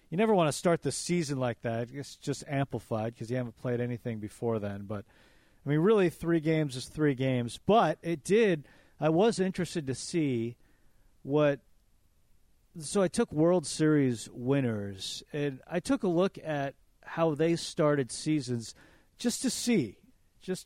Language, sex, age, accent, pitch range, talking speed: English, male, 40-59, American, 120-155 Hz, 165 wpm